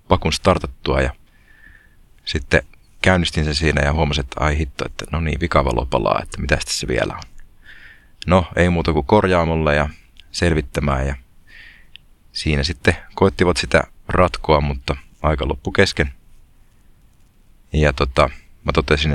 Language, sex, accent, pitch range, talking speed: Finnish, male, native, 70-90 Hz, 130 wpm